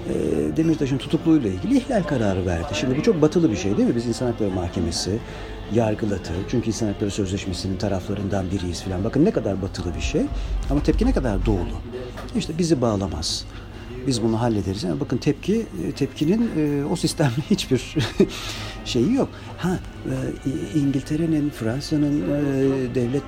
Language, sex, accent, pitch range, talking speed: Turkish, male, native, 100-155 Hz, 140 wpm